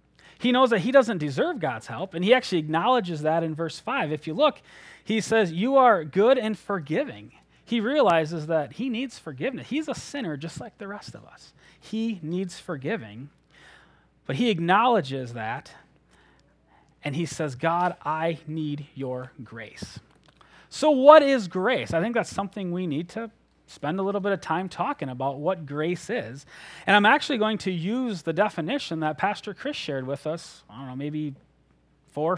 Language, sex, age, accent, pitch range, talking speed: English, male, 30-49, American, 150-220 Hz, 180 wpm